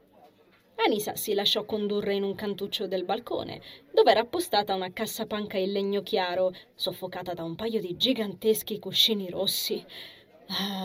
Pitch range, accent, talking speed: 180-220 Hz, native, 145 wpm